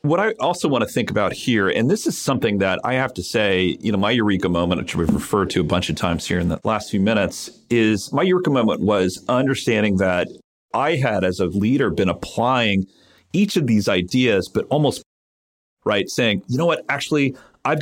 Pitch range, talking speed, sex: 105-150 Hz, 210 wpm, male